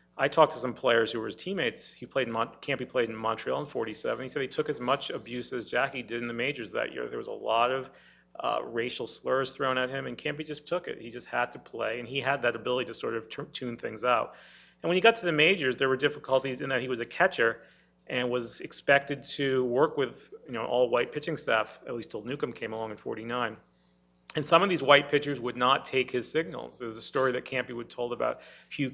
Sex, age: male, 40-59